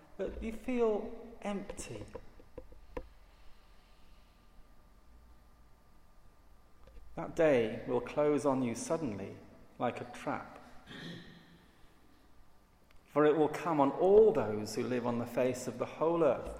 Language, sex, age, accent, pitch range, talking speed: English, male, 40-59, British, 135-200 Hz, 110 wpm